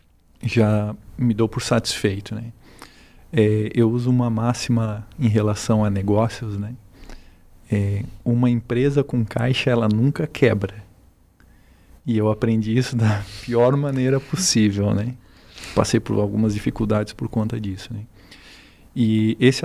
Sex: male